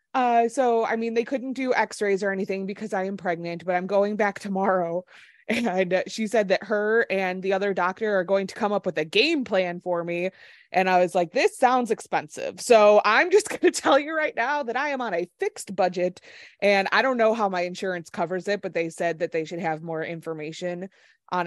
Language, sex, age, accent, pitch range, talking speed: English, female, 20-39, American, 175-235 Hz, 225 wpm